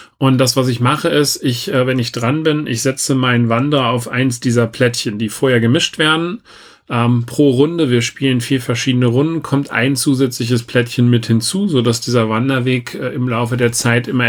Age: 40-59